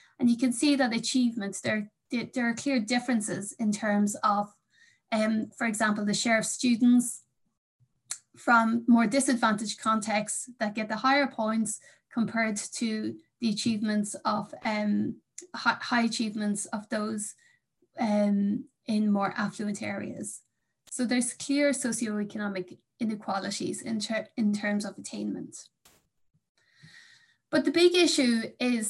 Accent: Irish